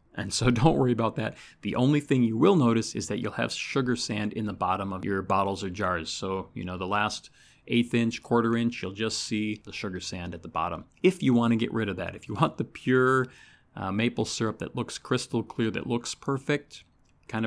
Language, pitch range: English, 100-120 Hz